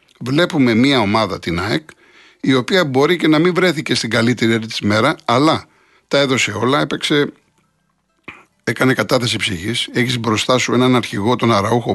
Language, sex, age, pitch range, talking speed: Greek, male, 60-79, 115-160 Hz, 155 wpm